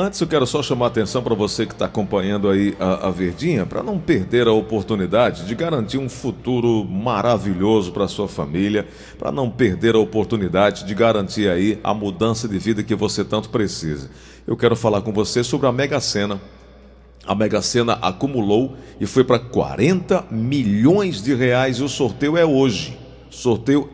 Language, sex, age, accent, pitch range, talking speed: Portuguese, male, 50-69, Brazilian, 105-140 Hz, 180 wpm